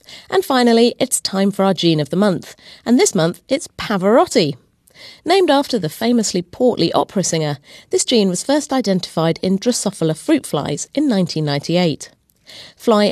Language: English